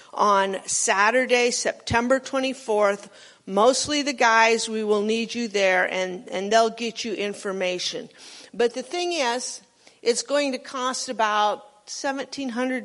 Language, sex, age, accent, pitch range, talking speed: English, female, 50-69, American, 200-255 Hz, 130 wpm